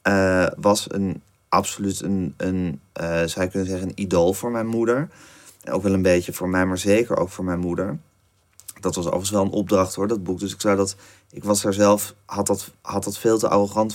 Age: 30-49